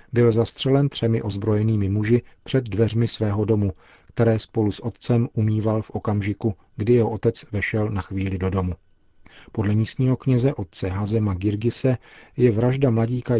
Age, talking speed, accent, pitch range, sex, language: 40-59, 150 wpm, native, 105-120 Hz, male, Czech